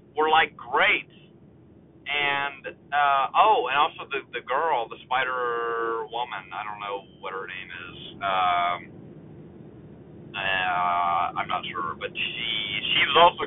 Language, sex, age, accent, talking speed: English, male, 30-49, American, 140 wpm